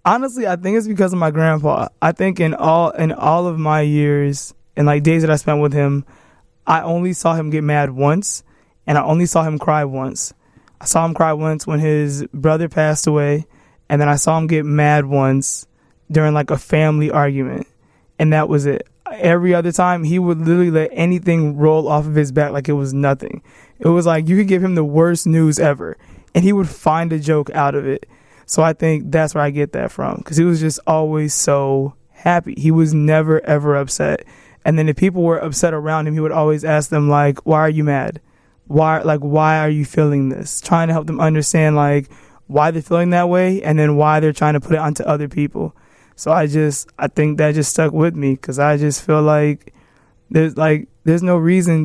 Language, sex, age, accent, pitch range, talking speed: English, male, 20-39, American, 145-165 Hz, 220 wpm